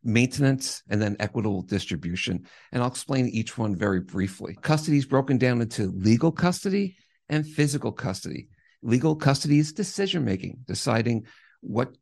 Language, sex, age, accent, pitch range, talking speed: English, male, 50-69, American, 105-135 Hz, 140 wpm